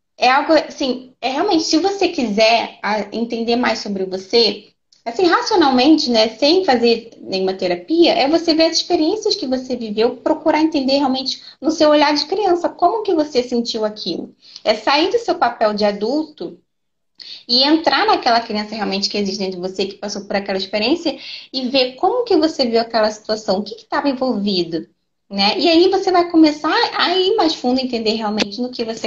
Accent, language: Brazilian, Portuguese